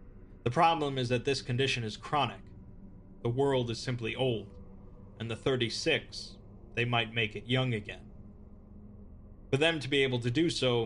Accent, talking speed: American, 165 wpm